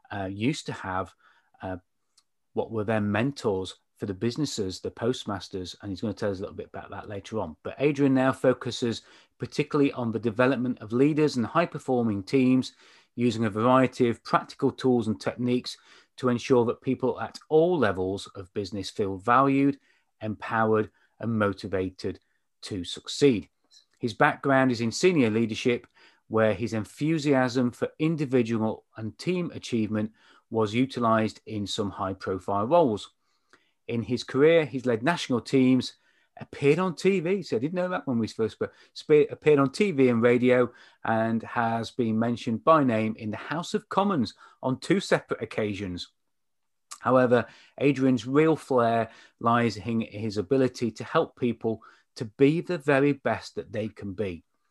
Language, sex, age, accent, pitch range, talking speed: English, male, 30-49, British, 110-135 Hz, 155 wpm